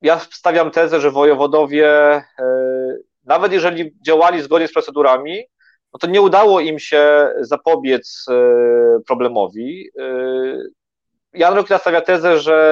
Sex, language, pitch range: male, Polish, 140-170 Hz